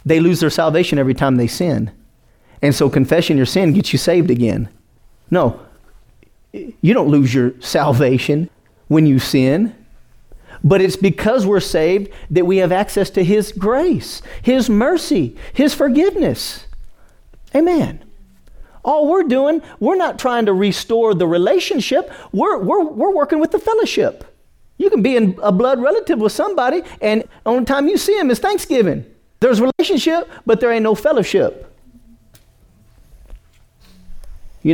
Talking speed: 145 wpm